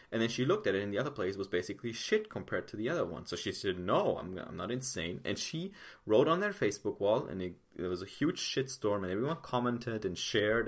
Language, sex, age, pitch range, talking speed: English, male, 30-49, 105-140 Hz, 255 wpm